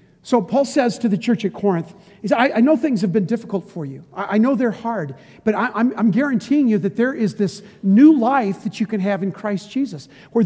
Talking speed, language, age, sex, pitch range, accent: 220 wpm, English, 50-69, male, 180-230 Hz, American